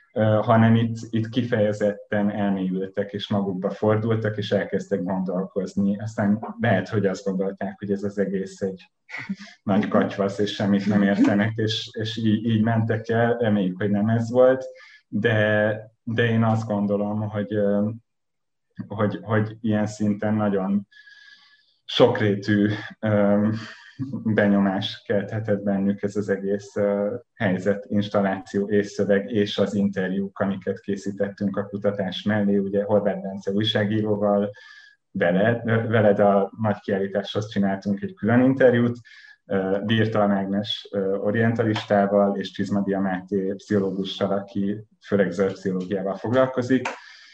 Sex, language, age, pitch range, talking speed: male, Hungarian, 30-49, 100-110 Hz, 120 wpm